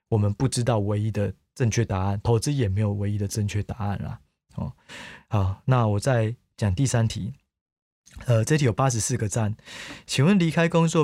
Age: 20-39